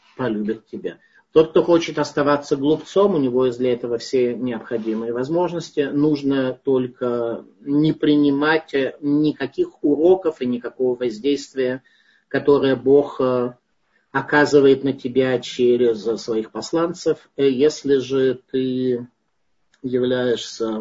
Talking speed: 105 wpm